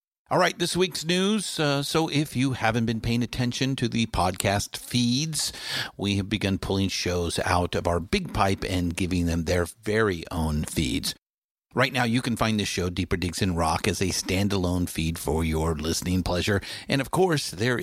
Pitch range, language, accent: 90-120 Hz, English, American